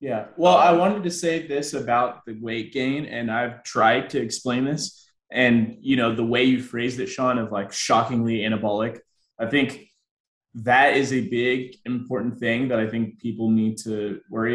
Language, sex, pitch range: English, male, 110-135 Hz